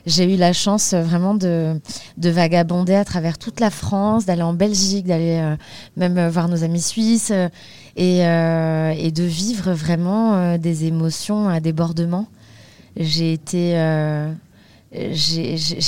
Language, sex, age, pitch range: French, female, 20-39, 160-185 Hz